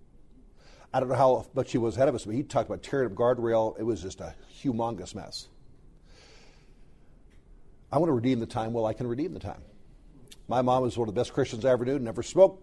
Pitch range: 95-130 Hz